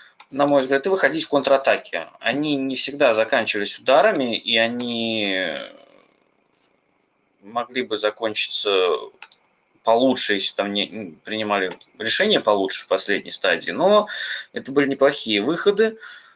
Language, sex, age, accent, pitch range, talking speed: Russian, male, 20-39, native, 110-155 Hz, 115 wpm